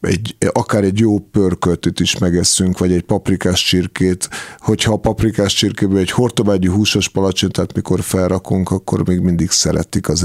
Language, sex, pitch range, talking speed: Hungarian, male, 90-105 Hz, 150 wpm